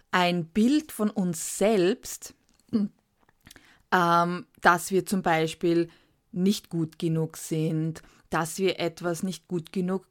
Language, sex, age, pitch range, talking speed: German, female, 20-39, 170-210 Hz, 120 wpm